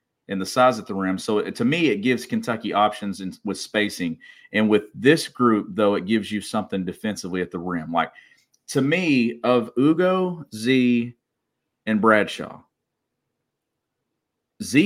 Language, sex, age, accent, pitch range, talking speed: English, male, 40-59, American, 95-120 Hz, 155 wpm